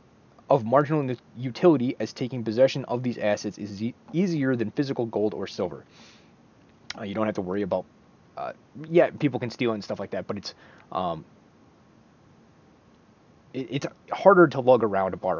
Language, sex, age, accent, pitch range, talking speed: English, male, 20-39, American, 100-135 Hz, 175 wpm